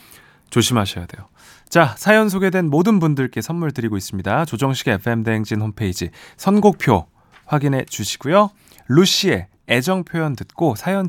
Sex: male